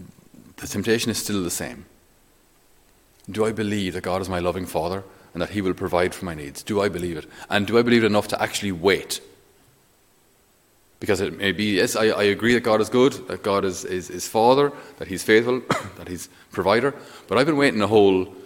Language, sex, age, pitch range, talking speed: English, male, 30-49, 85-105 Hz, 215 wpm